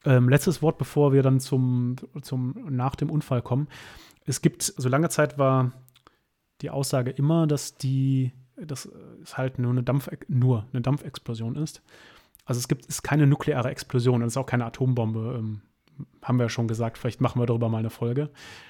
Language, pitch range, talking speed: German, 120-145 Hz, 195 wpm